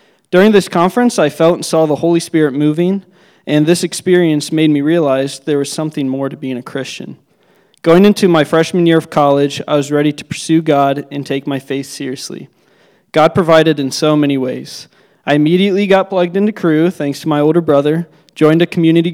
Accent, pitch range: American, 140-170 Hz